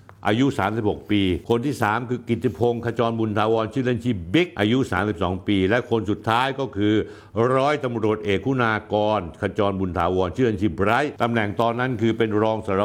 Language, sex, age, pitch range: Thai, male, 60-79, 100-130 Hz